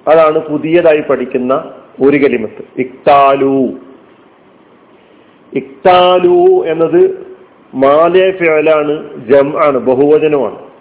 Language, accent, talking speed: Malayalam, native, 55 wpm